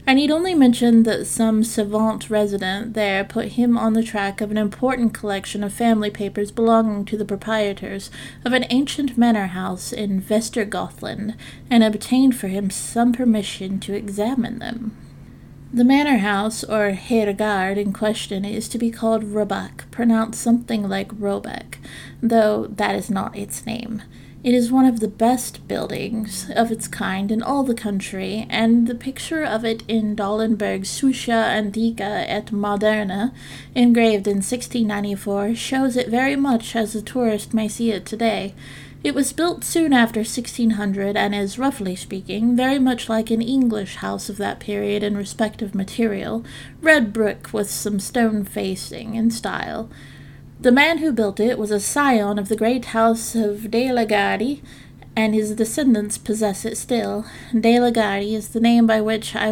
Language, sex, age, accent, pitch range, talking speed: English, female, 30-49, American, 205-235 Hz, 165 wpm